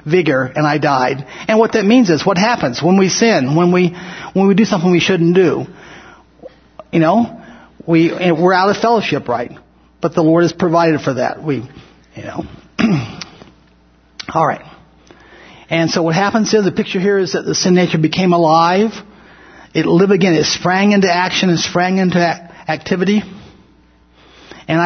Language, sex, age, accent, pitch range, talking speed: English, male, 50-69, American, 160-195 Hz, 160 wpm